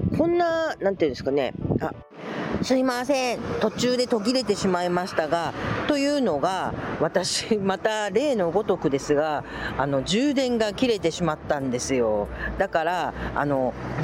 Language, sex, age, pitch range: Japanese, female, 40-59, 155-235 Hz